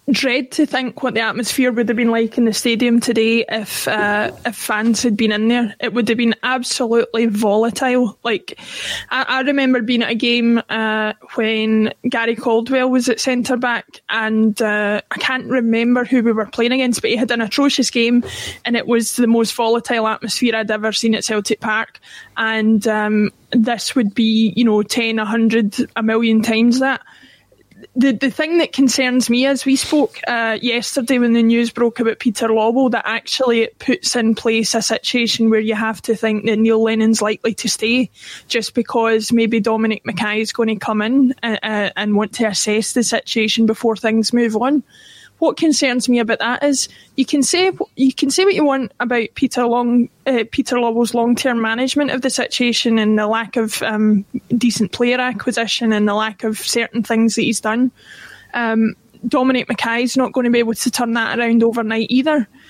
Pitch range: 225-255 Hz